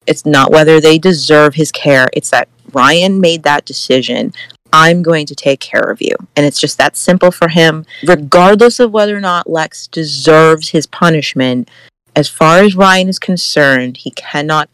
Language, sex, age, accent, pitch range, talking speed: English, female, 30-49, American, 145-180 Hz, 180 wpm